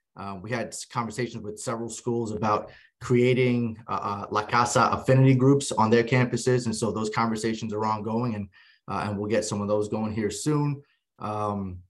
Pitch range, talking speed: 110-125 Hz, 180 wpm